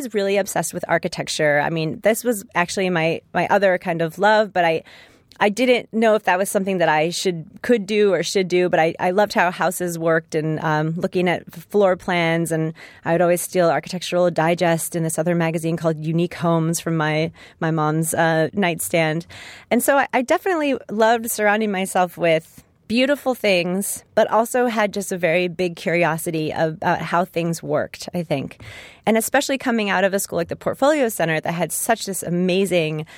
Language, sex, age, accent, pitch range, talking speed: English, female, 30-49, American, 160-200 Hz, 195 wpm